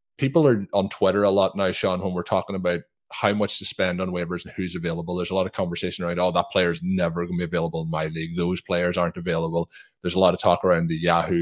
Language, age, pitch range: English, 20-39, 90-100 Hz